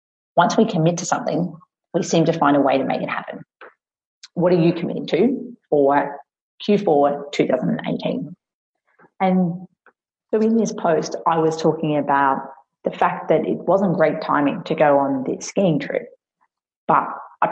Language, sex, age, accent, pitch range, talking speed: English, female, 30-49, Australian, 145-185 Hz, 160 wpm